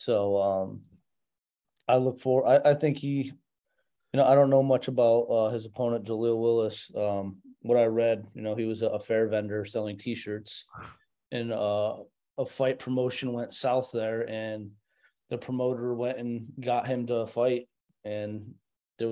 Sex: male